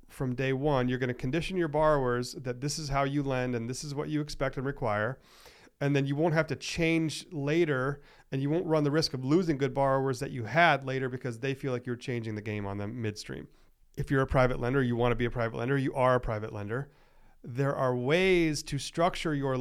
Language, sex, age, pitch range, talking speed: English, male, 40-59, 125-150 Hz, 240 wpm